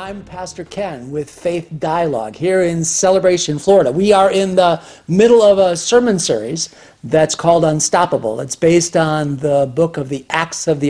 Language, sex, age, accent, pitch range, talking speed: English, male, 50-69, American, 150-190 Hz, 175 wpm